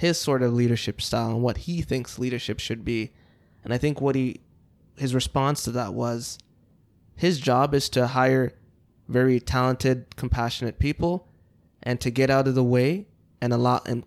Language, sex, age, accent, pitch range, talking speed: English, male, 20-39, American, 120-140 Hz, 175 wpm